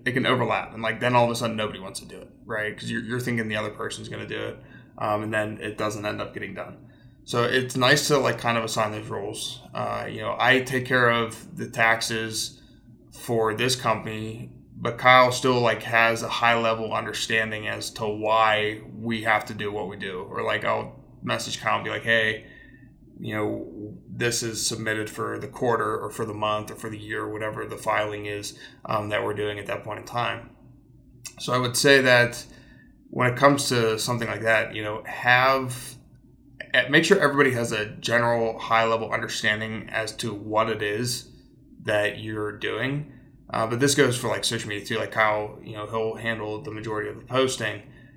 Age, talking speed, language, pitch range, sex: 20-39, 205 wpm, English, 110-125 Hz, male